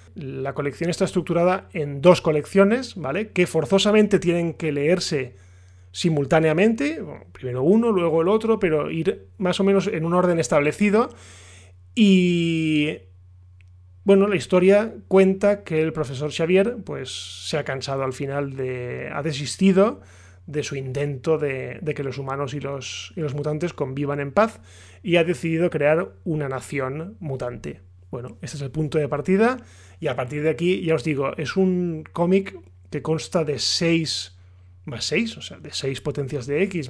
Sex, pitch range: male, 130-175 Hz